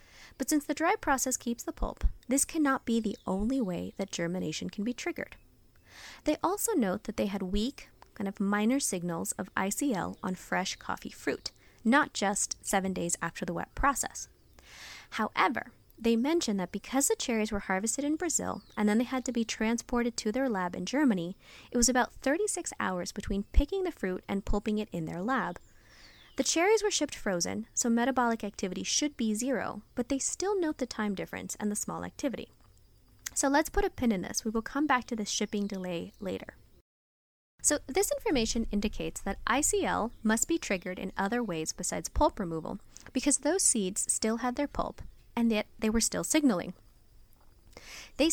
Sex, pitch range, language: female, 200-275 Hz, English